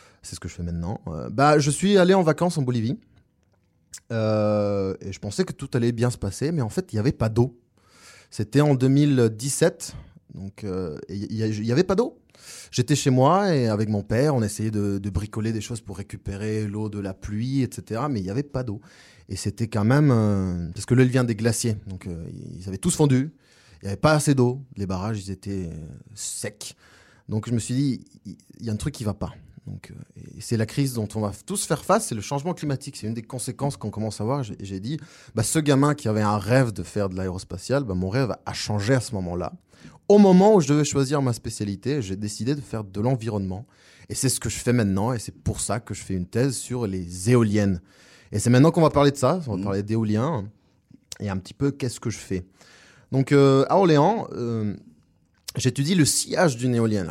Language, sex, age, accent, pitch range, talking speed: French, male, 20-39, French, 100-135 Hz, 230 wpm